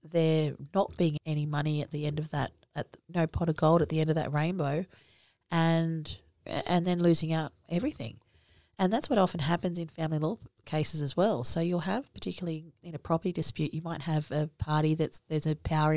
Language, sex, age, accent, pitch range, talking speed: English, female, 30-49, Australian, 150-170 Hz, 210 wpm